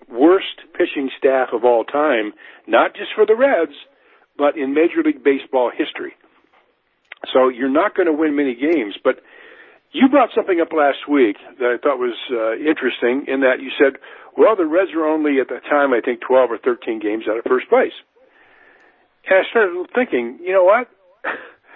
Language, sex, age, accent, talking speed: English, male, 50-69, American, 185 wpm